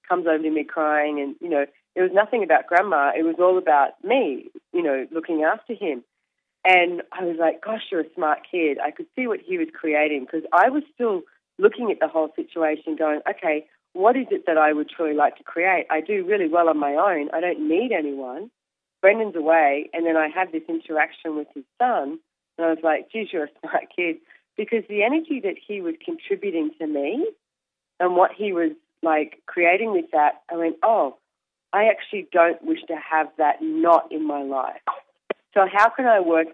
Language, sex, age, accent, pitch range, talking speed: English, female, 30-49, Australian, 150-210 Hz, 210 wpm